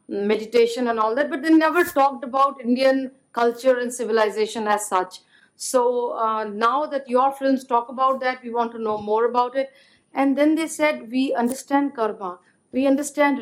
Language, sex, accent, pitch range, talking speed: English, female, Indian, 210-255 Hz, 180 wpm